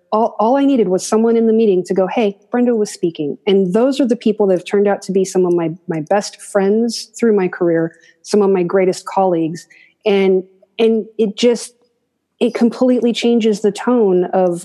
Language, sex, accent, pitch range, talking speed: English, female, American, 180-215 Hz, 205 wpm